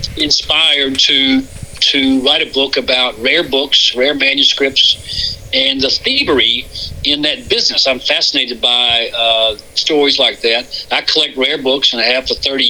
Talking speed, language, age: 155 wpm, English, 60-79